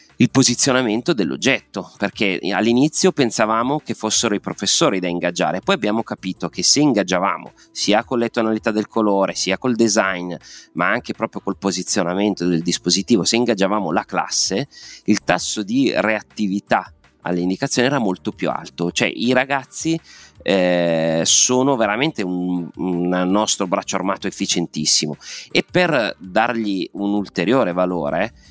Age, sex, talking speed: 30-49, male, 140 wpm